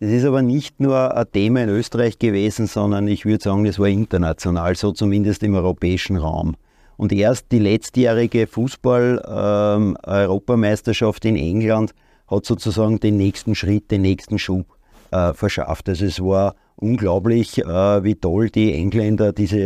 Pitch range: 100-115 Hz